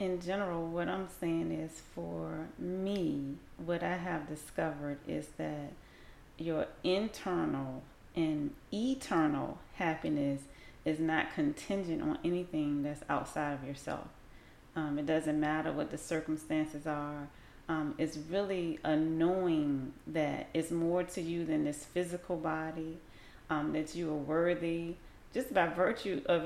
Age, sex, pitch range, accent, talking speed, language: 30-49, female, 150-175 Hz, American, 130 wpm, English